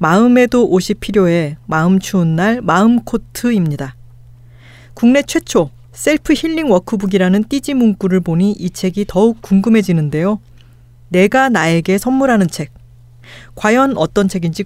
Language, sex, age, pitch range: Korean, female, 40-59, 150-220 Hz